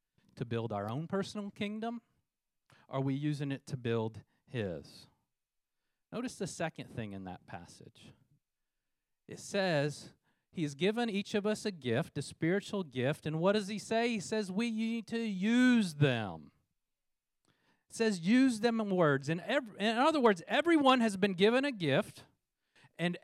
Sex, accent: male, American